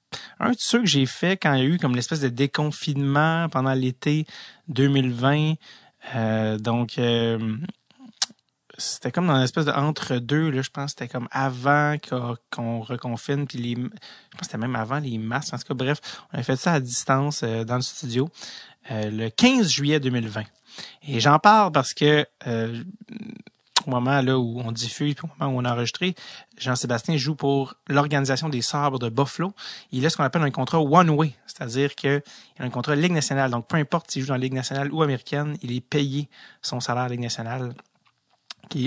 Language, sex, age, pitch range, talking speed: English, male, 30-49, 120-150 Hz, 195 wpm